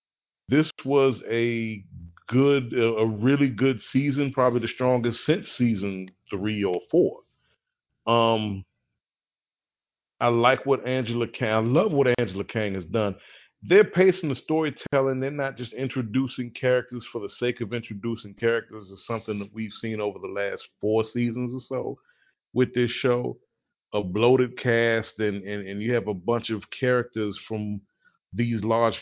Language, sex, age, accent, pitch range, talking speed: English, male, 40-59, American, 110-125 Hz, 150 wpm